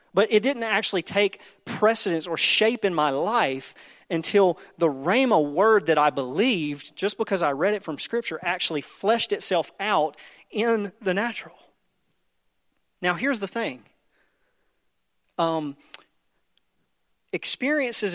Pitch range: 150-215 Hz